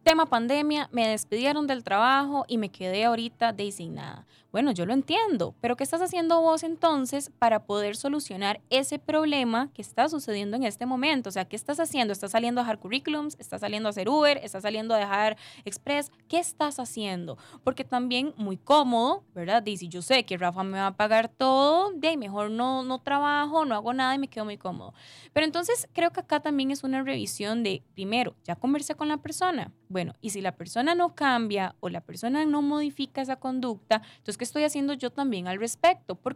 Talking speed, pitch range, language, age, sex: 205 wpm, 210-295 Hz, Spanish, 10-29, female